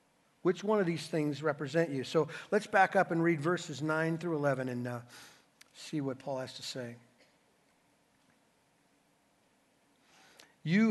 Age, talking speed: 50-69, 145 wpm